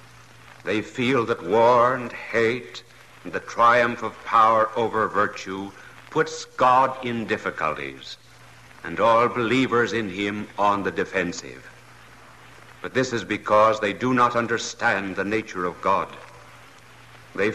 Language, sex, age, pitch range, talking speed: English, male, 60-79, 110-130 Hz, 130 wpm